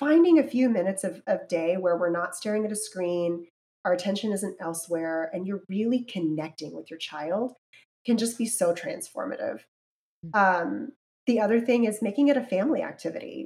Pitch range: 175-230 Hz